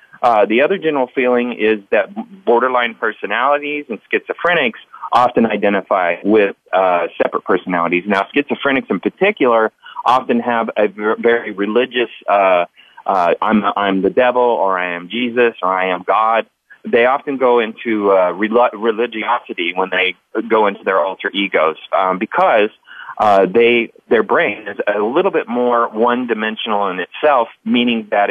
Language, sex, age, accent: English, male, 30-49, American